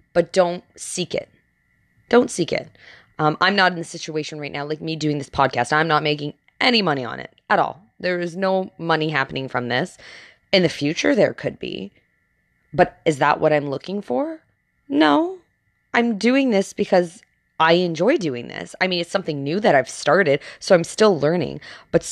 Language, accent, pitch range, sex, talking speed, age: English, American, 140-195 Hz, female, 195 wpm, 20-39